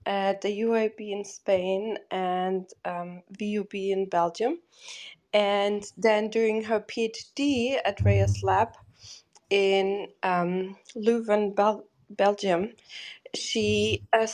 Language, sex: English, female